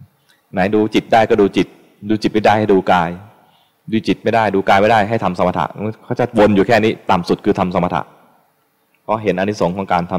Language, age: Thai, 20-39